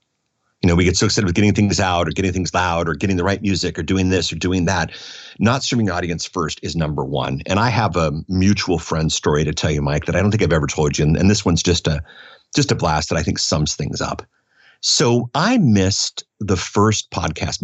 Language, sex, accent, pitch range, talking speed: English, male, American, 85-105 Hz, 245 wpm